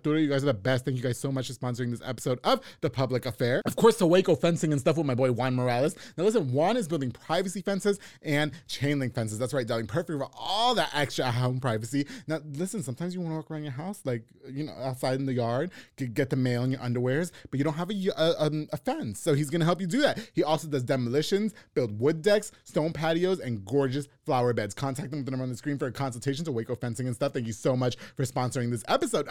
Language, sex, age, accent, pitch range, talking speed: English, male, 20-39, American, 120-170 Hz, 255 wpm